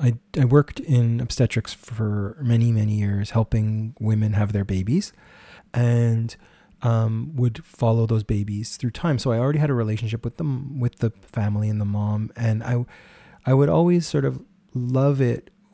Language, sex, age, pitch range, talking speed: English, male, 30-49, 115-145 Hz, 170 wpm